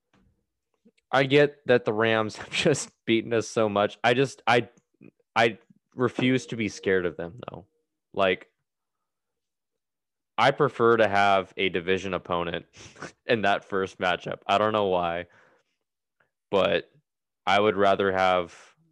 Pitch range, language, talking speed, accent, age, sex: 90-110 Hz, English, 135 wpm, American, 20-39, male